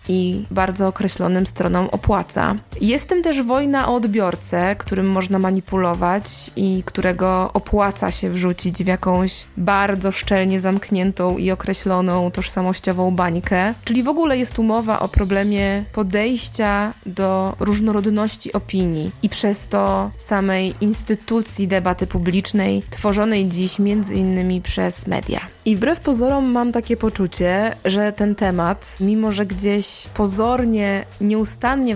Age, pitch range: 20-39, 185-210 Hz